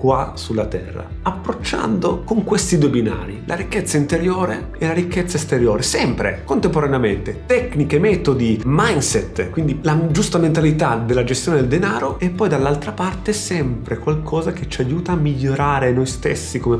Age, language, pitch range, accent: 30-49, Italian, 130-175 Hz, native